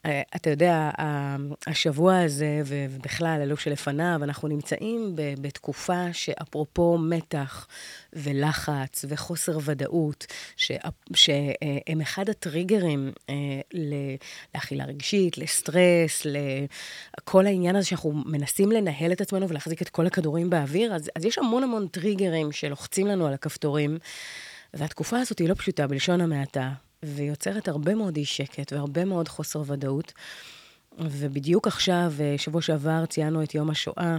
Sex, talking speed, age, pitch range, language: female, 120 wpm, 30-49, 145-170 Hz, Hebrew